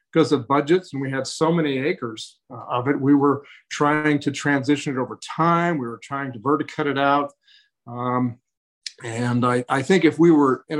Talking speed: 195 wpm